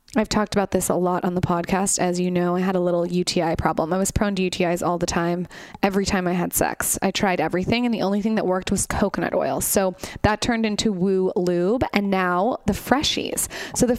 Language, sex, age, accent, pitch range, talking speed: English, female, 20-39, American, 180-205 Hz, 235 wpm